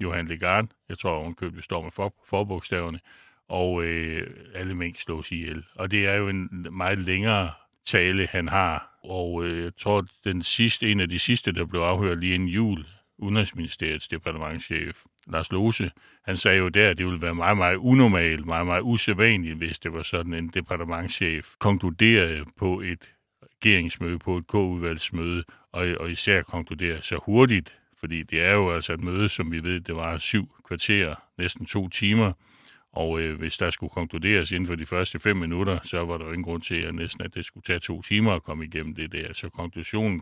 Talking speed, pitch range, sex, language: 195 wpm, 85-100 Hz, male, Danish